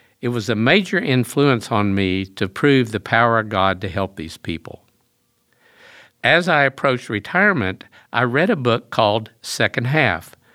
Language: English